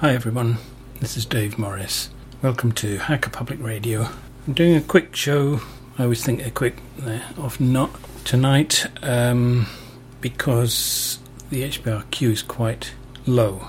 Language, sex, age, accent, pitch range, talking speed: English, male, 40-59, British, 115-130 Hz, 140 wpm